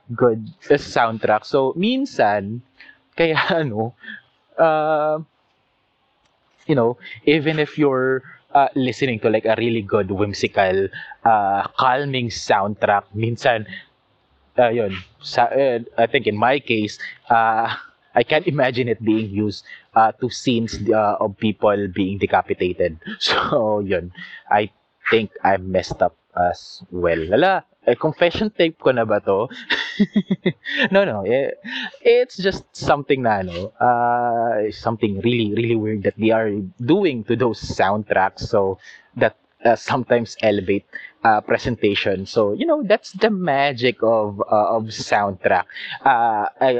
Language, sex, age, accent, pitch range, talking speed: Filipino, male, 20-39, native, 105-140 Hz, 135 wpm